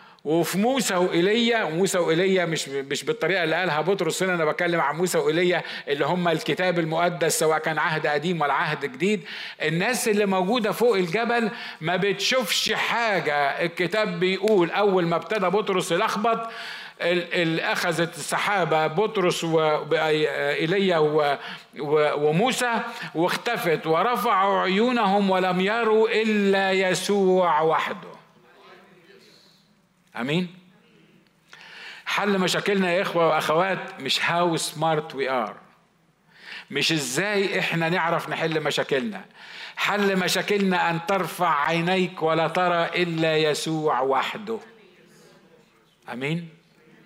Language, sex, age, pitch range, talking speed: Arabic, male, 50-69, 160-200 Hz, 110 wpm